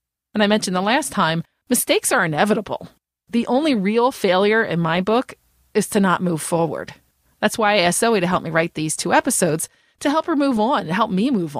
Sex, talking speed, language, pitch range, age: female, 215 wpm, English, 170-230 Hz, 30-49